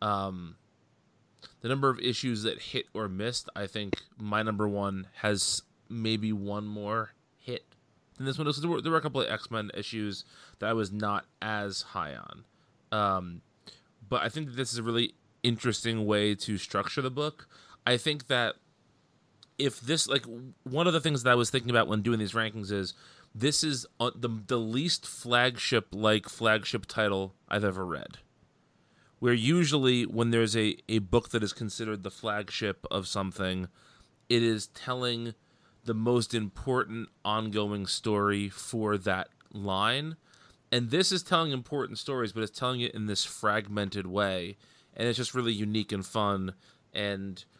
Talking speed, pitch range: 165 wpm, 105-125 Hz